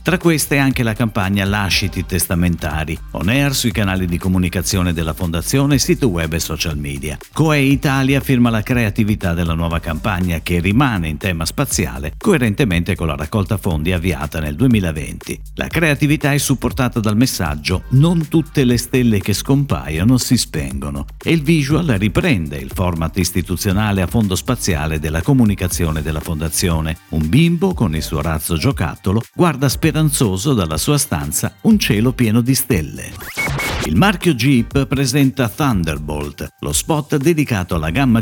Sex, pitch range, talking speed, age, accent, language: male, 85-130 Hz, 150 wpm, 50-69, native, Italian